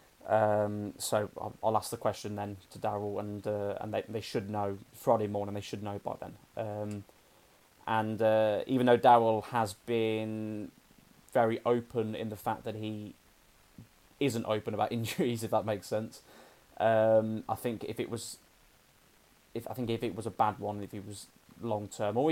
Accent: British